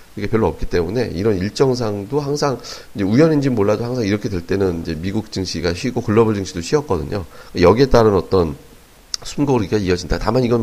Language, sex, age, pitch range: Korean, male, 40-59, 100-130 Hz